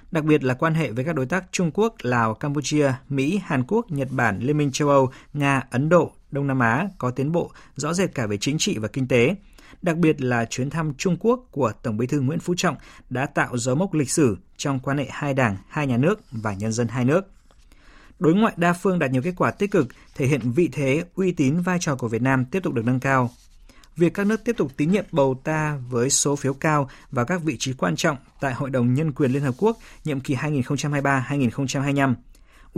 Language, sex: Vietnamese, male